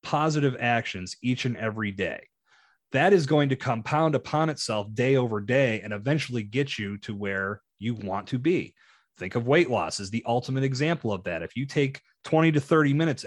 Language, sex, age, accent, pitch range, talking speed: English, male, 30-49, American, 110-140 Hz, 195 wpm